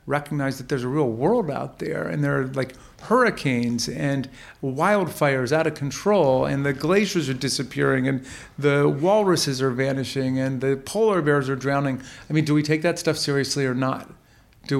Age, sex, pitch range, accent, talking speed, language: 40-59, male, 130-160 Hz, American, 185 wpm, English